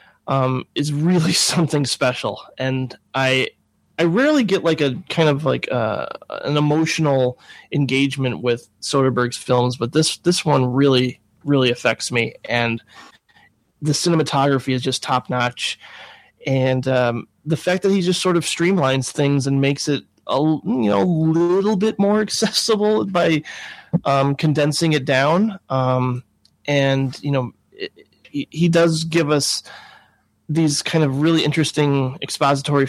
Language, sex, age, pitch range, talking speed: English, male, 20-39, 130-155 Hz, 145 wpm